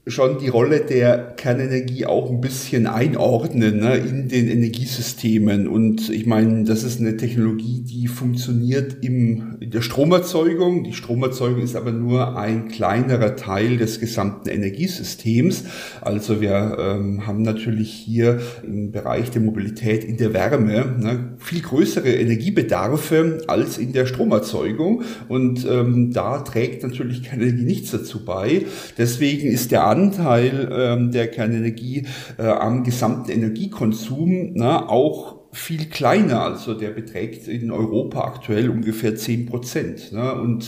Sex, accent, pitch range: male, German, 115-130 Hz